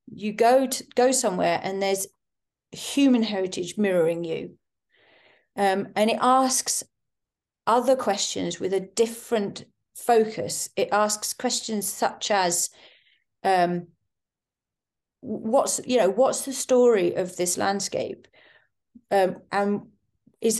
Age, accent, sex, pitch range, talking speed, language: 40-59, British, female, 185-230 Hz, 115 wpm, English